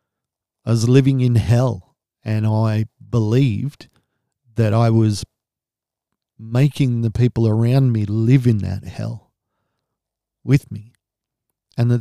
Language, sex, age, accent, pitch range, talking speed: English, male, 50-69, Australian, 105-125 Hz, 120 wpm